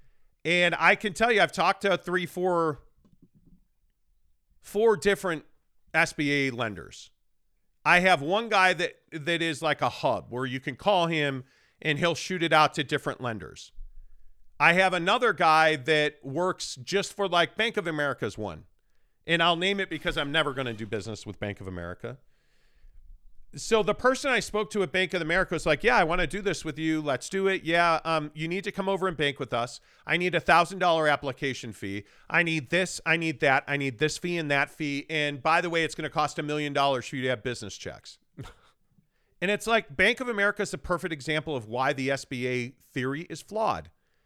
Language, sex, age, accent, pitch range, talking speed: English, male, 40-59, American, 135-185 Hz, 205 wpm